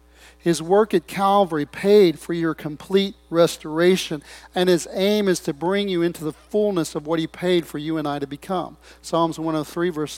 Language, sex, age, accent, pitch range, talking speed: English, male, 40-59, American, 145-175 Hz, 190 wpm